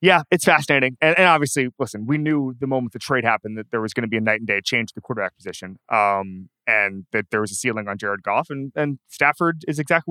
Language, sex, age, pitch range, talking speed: English, male, 20-39, 115-155 Hz, 260 wpm